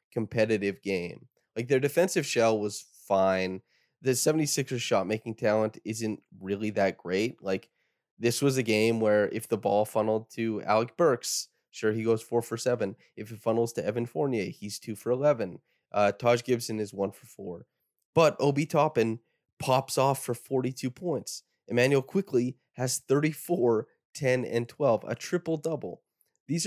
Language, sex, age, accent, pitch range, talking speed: English, male, 20-39, American, 105-130 Hz, 160 wpm